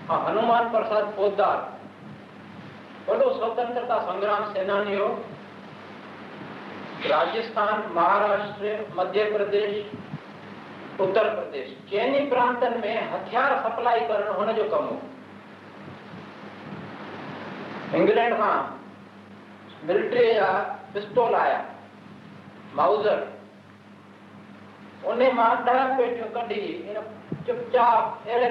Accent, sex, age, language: native, male, 60-79, Hindi